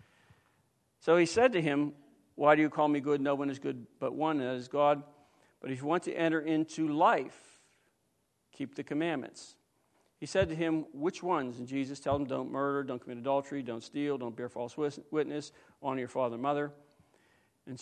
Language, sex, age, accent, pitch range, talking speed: English, male, 50-69, American, 135-170 Hz, 200 wpm